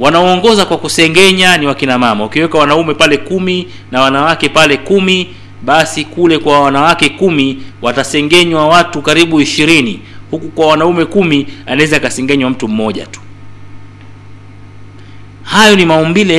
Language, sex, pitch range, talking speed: Swahili, male, 105-165 Hz, 130 wpm